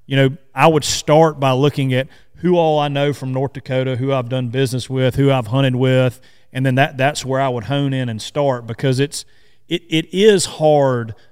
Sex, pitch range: male, 125-145 Hz